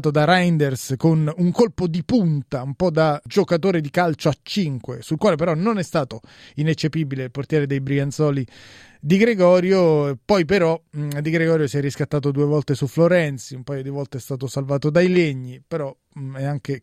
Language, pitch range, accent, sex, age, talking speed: Italian, 140-175 Hz, native, male, 30-49, 180 wpm